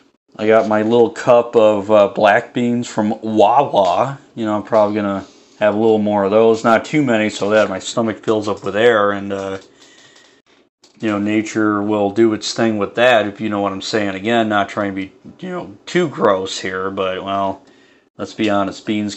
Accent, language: American, English